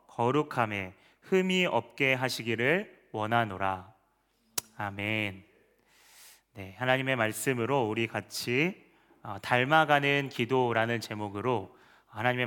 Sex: male